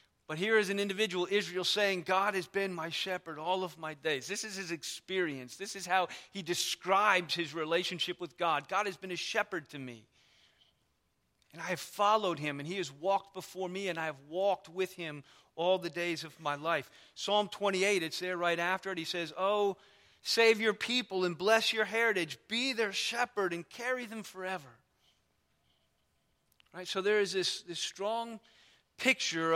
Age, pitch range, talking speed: 40-59, 160-195 Hz, 185 wpm